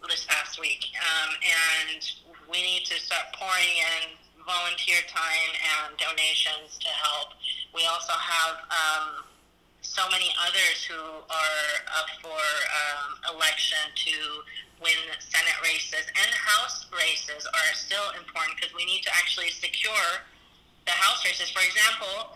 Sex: female